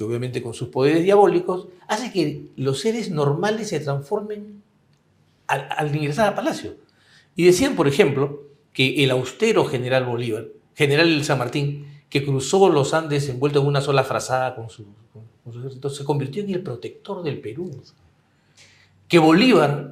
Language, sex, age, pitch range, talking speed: Spanish, male, 50-69, 125-160 Hz, 160 wpm